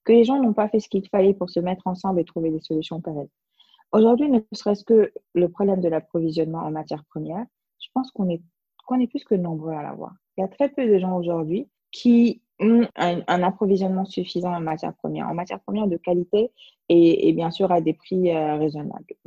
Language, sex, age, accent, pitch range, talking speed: French, female, 20-39, French, 170-215 Hz, 225 wpm